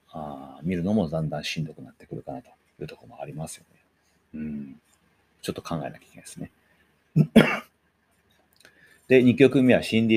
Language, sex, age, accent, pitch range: Japanese, male, 40-59, native, 90-115 Hz